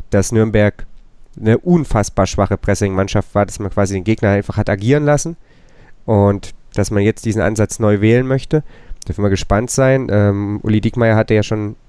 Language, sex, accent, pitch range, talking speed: German, male, German, 100-120 Hz, 175 wpm